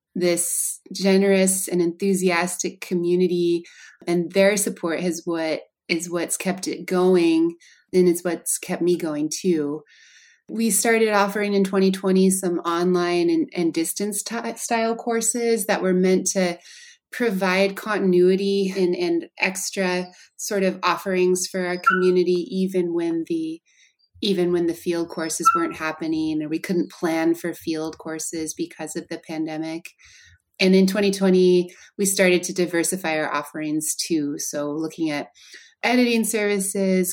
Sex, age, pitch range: female, 20-39, 170-195 Hz